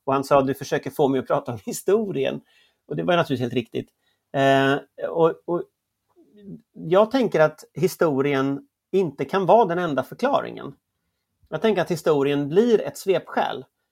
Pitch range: 135-200 Hz